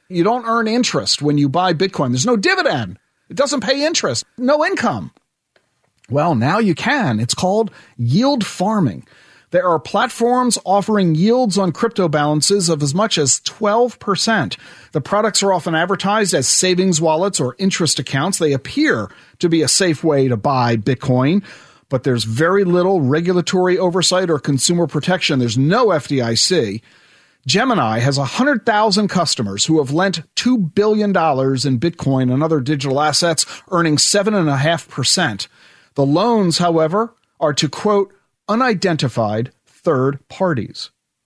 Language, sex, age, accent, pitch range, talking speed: English, male, 40-59, American, 145-210 Hz, 140 wpm